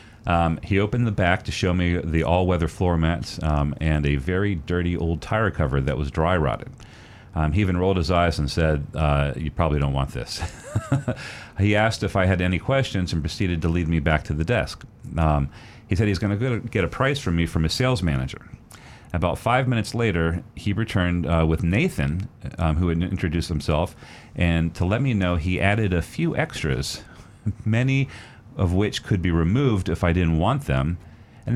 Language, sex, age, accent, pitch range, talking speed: English, male, 40-59, American, 80-105 Hz, 200 wpm